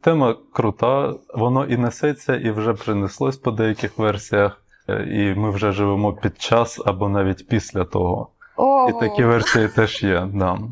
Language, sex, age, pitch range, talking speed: Ukrainian, male, 20-39, 100-125 Hz, 150 wpm